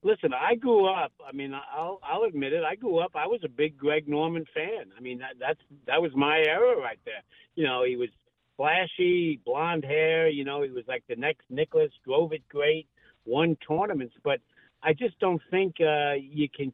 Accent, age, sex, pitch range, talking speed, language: American, 60-79, male, 140-195 Hz, 205 wpm, English